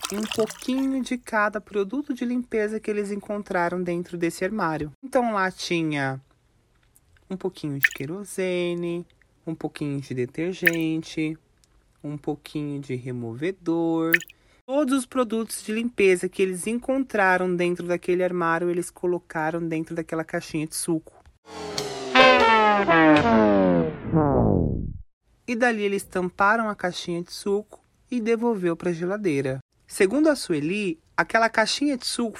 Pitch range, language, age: 155-215 Hz, Portuguese, 30-49